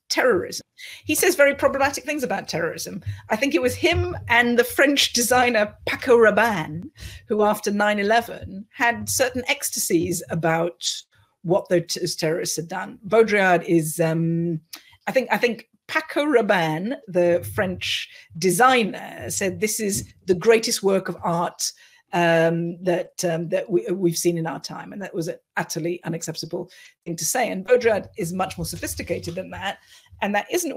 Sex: female